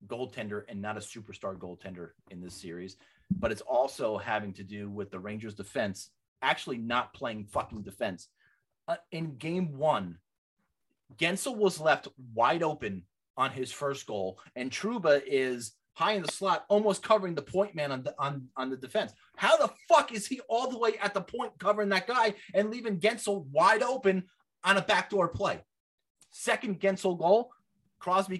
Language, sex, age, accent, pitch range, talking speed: English, male, 30-49, American, 135-200 Hz, 175 wpm